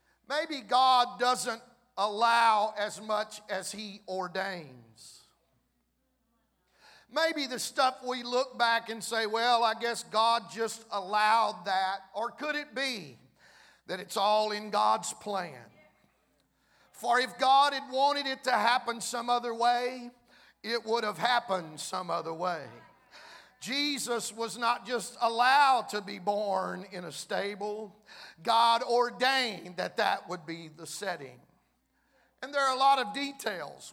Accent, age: American, 50-69